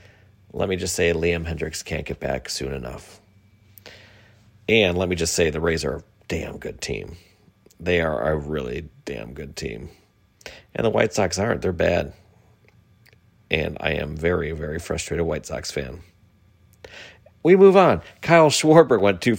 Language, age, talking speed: English, 40-59, 165 wpm